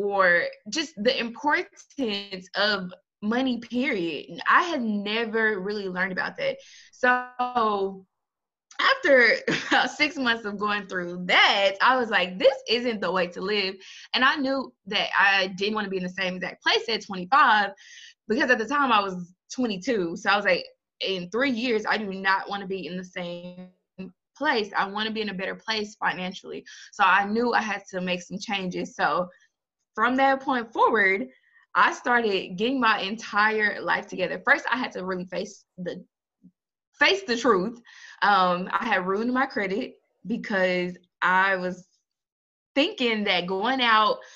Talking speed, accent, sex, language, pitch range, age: 170 wpm, American, female, English, 195-265 Hz, 20-39